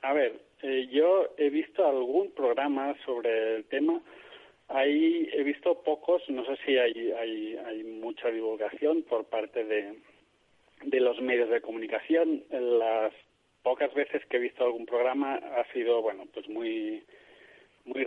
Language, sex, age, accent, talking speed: Spanish, male, 40-59, Spanish, 150 wpm